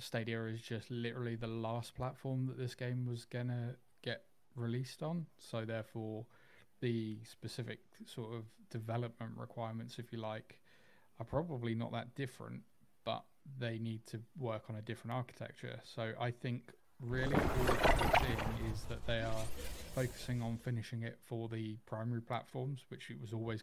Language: English